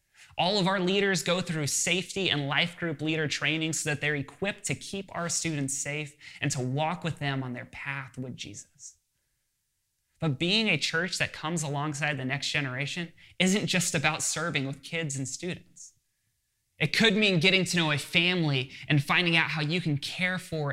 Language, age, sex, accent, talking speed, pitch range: English, 20-39, male, American, 190 wpm, 140-175 Hz